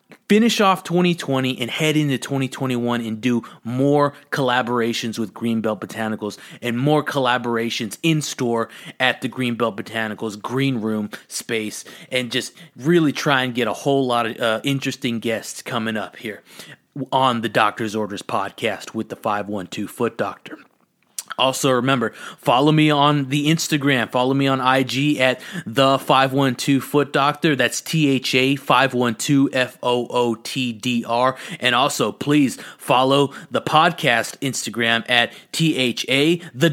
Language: English